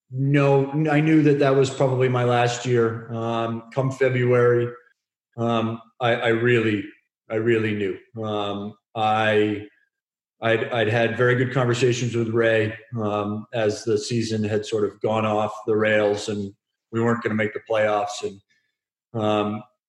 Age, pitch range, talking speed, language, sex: 30-49, 105-125 Hz, 155 wpm, English, male